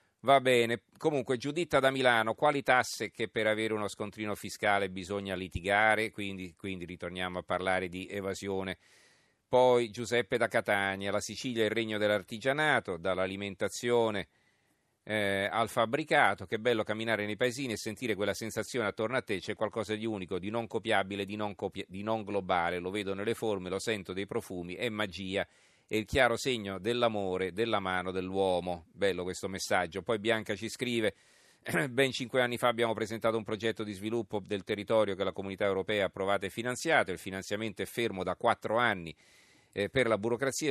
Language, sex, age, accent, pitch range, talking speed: Italian, male, 40-59, native, 95-115 Hz, 170 wpm